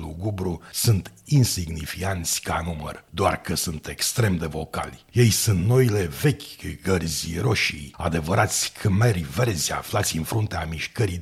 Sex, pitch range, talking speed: male, 80-110 Hz, 130 wpm